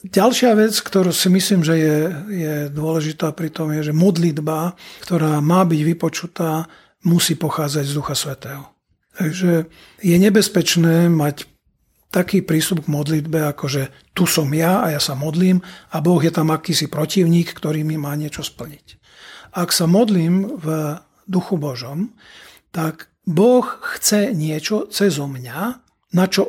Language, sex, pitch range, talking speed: Slovak, male, 155-190 Hz, 150 wpm